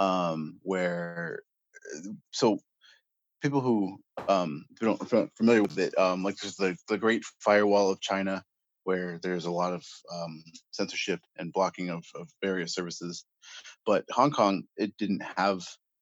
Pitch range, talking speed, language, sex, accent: 90-100 Hz, 155 wpm, English, male, American